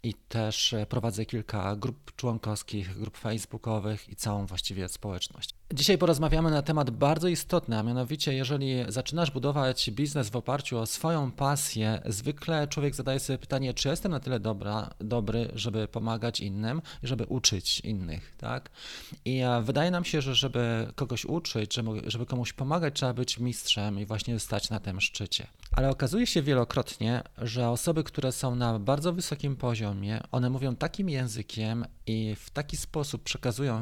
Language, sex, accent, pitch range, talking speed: Polish, male, native, 110-155 Hz, 155 wpm